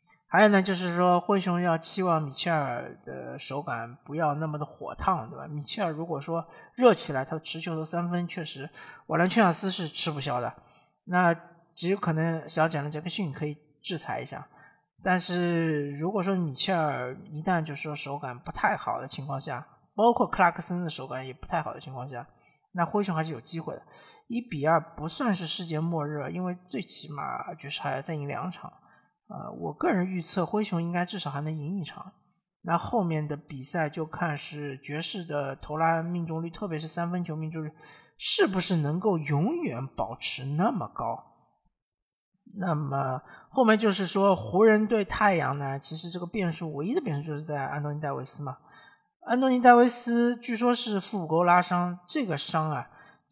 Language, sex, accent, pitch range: Chinese, male, native, 150-185 Hz